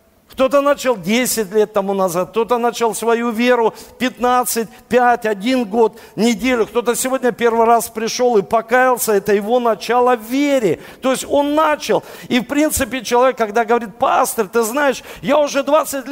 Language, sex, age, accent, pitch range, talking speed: Russian, male, 50-69, native, 210-255 Hz, 155 wpm